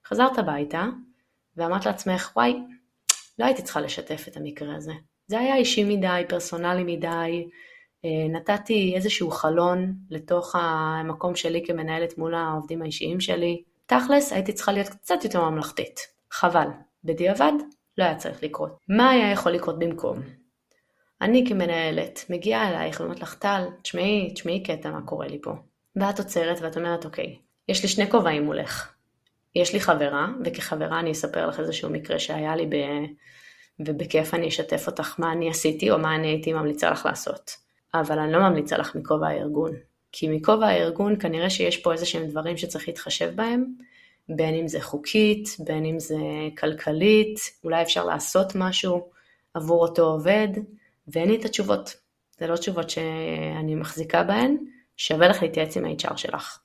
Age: 20-39